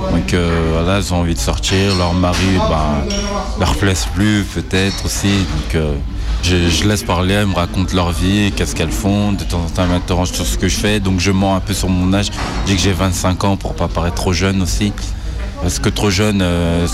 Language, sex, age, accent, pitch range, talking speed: French, male, 20-39, French, 85-95 Hz, 240 wpm